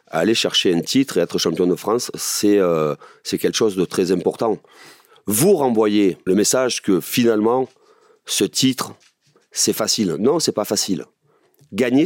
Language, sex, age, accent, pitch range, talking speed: French, male, 30-49, French, 90-120 Hz, 165 wpm